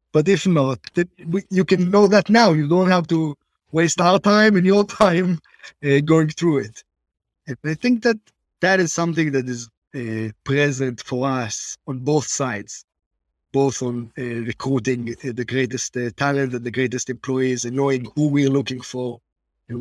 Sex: male